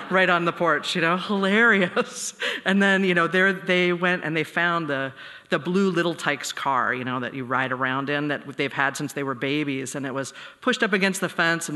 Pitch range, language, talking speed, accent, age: 140-180 Hz, English, 235 wpm, American, 40-59